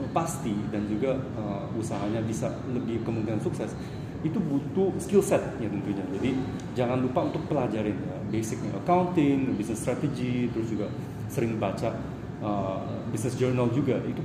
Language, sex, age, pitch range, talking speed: Indonesian, male, 30-49, 110-140 Hz, 140 wpm